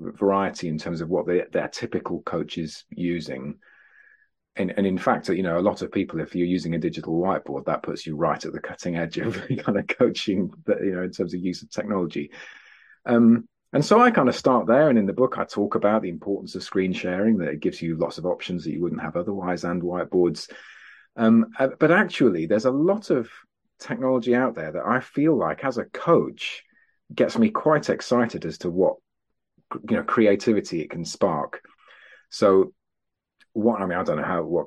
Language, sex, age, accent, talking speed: English, male, 40-59, British, 210 wpm